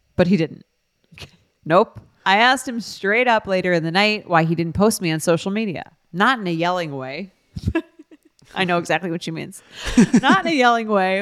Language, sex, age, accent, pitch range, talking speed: English, female, 30-49, American, 155-205 Hz, 200 wpm